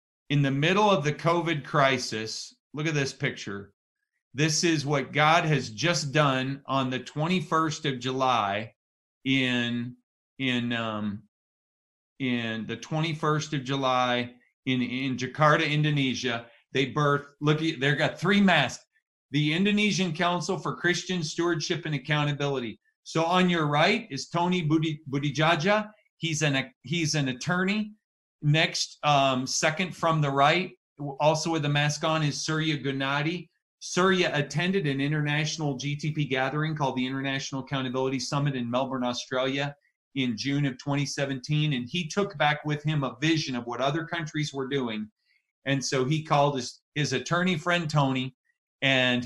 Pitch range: 130-160 Hz